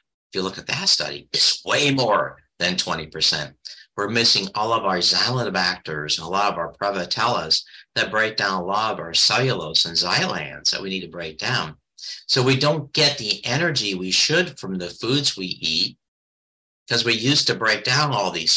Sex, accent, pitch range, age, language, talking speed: male, American, 95-140 Hz, 50-69, English, 195 wpm